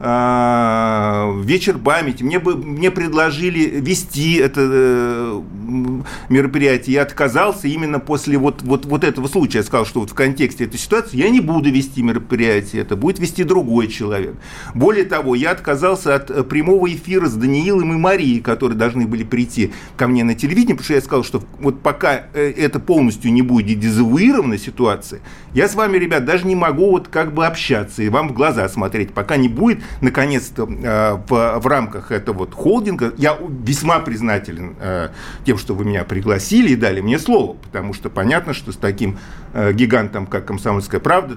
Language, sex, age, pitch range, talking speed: Russian, male, 40-59, 110-150 Hz, 175 wpm